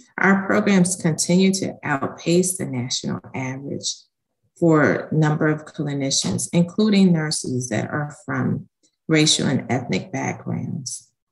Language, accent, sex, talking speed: English, American, female, 110 wpm